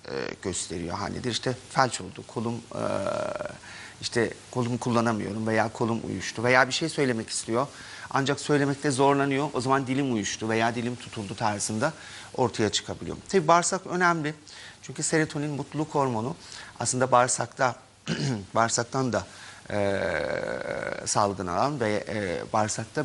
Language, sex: Turkish, male